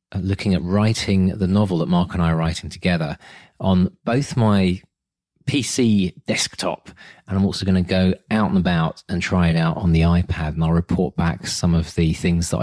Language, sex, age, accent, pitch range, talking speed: English, male, 30-49, British, 85-105 Hz, 200 wpm